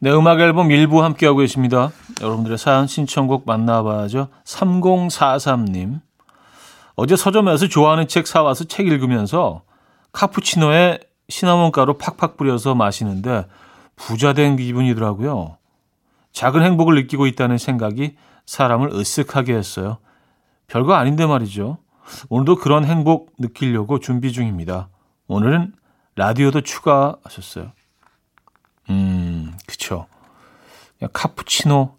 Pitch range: 115-160 Hz